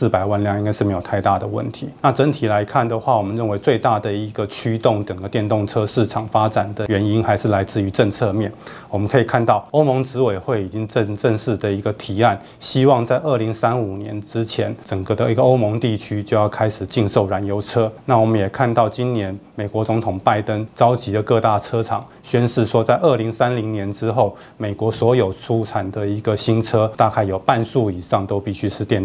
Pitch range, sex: 105-115 Hz, male